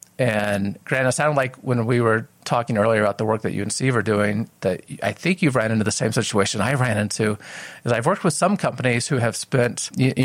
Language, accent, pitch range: English, American, 105-135 Hz